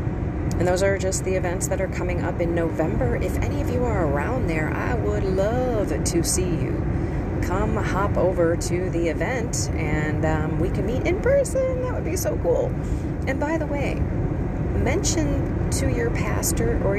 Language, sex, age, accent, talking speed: English, female, 30-49, American, 185 wpm